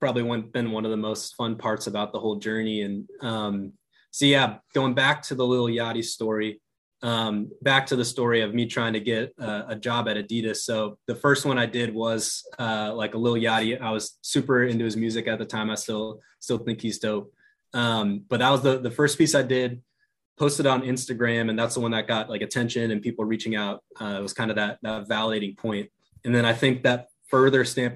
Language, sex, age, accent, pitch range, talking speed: English, male, 20-39, American, 110-125 Hz, 230 wpm